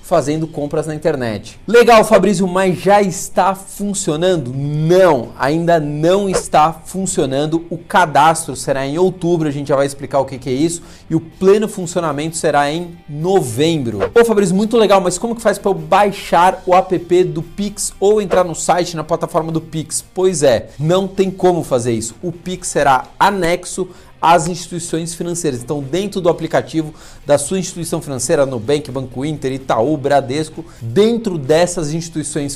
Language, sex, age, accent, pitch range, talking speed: Portuguese, male, 40-59, Brazilian, 145-185 Hz, 170 wpm